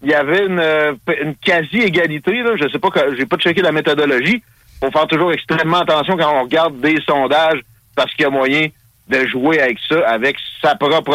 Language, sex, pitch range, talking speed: French, male, 135-190 Hz, 210 wpm